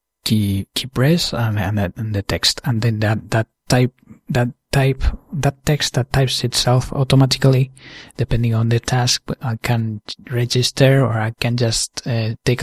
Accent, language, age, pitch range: Spanish, English, 20-39, 105-125 Hz